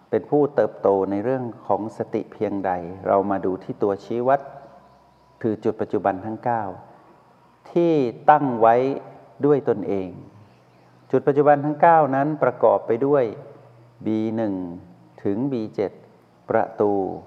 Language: Thai